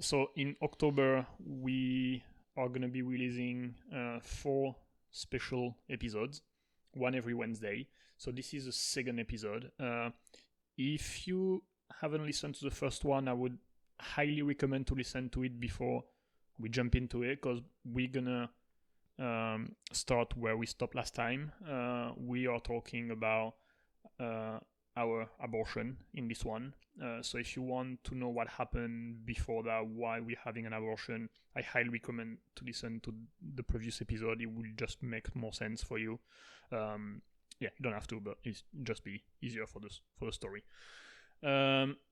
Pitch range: 115-130 Hz